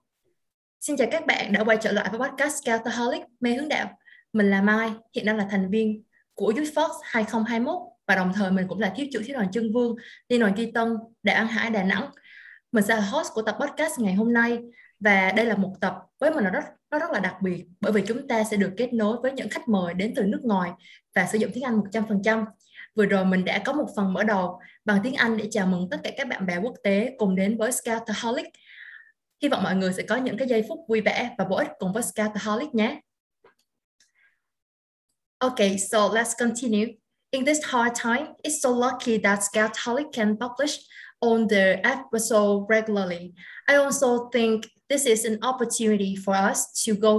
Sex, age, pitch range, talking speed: female, 20-39, 205-250 Hz, 210 wpm